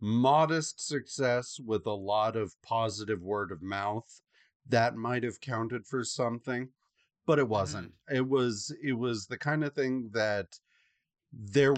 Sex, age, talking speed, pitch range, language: male, 40-59, 145 wpm, 105-140 Hz, English